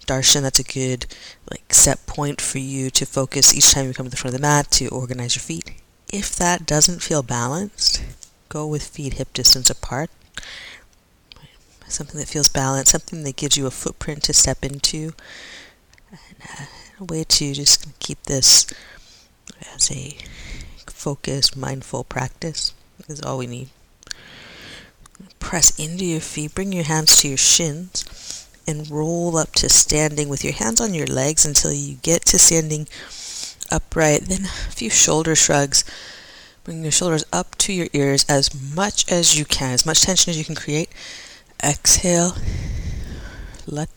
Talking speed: 160 wpm